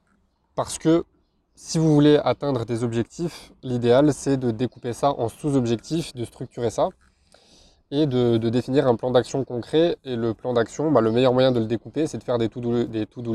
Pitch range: 115-130 Hz